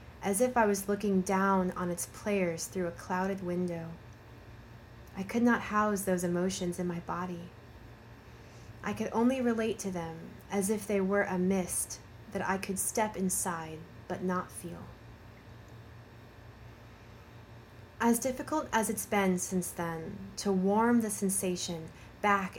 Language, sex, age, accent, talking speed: English, female, 30-49, American, 145 wpm